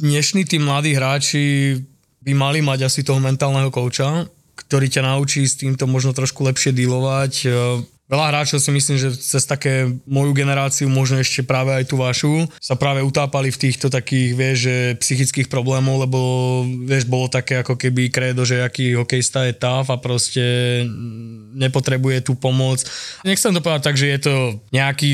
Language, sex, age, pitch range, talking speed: Slovak, male, 20-39, 130-145 Hz, 165 wpm